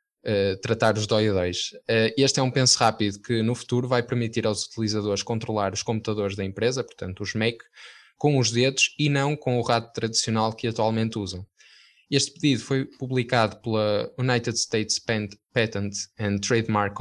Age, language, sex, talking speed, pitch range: 10-29, Portuguese, male, 165 wpm, 105-125 Hz